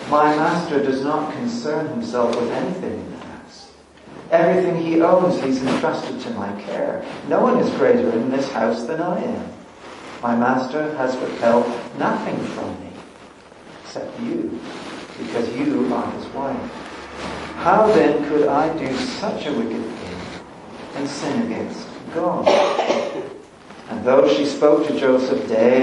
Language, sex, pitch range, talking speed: English, male, 120-155 Hz, 145 wpm